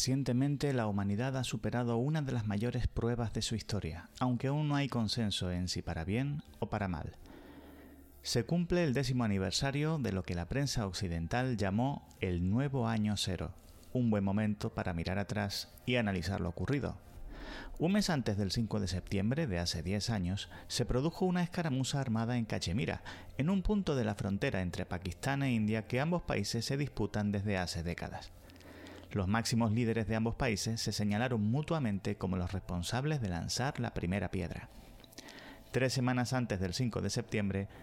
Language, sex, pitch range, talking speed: Spanish, male, 95-130 Hz, 175 wpm